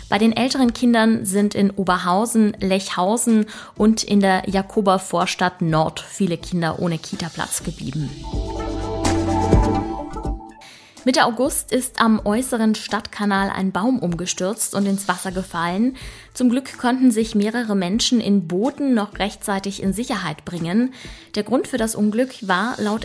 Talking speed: 135 wpm